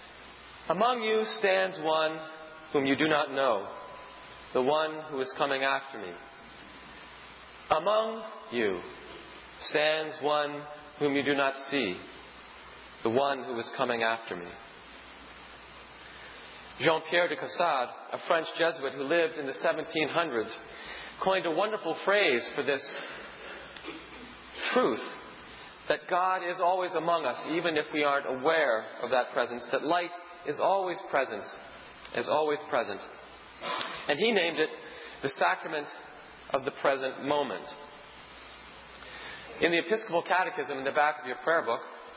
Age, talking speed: 40-59, 130 wpm